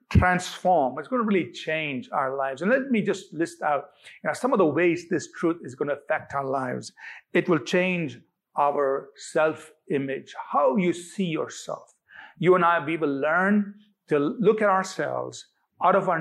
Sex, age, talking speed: male, 50-69, 180 wpm